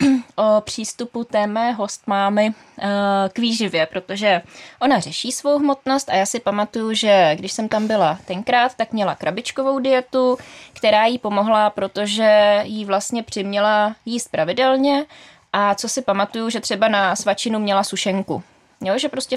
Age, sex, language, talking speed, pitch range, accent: 20-39, female, Czech, 150 wpm, 195-240 Hz, native